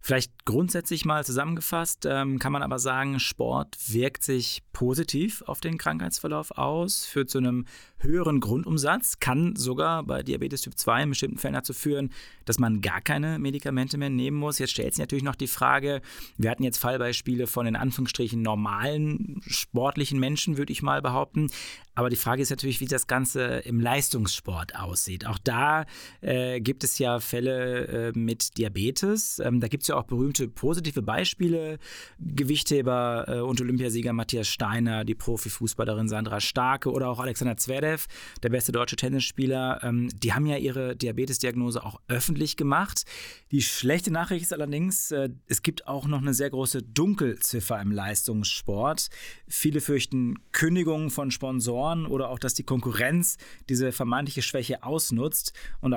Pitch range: 120-145 Hz